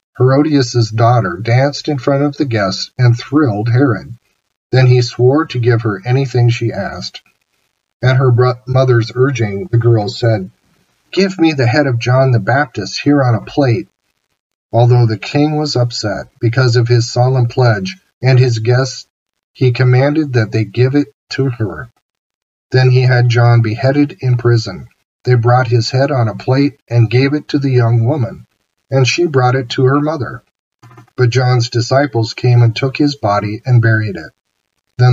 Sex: male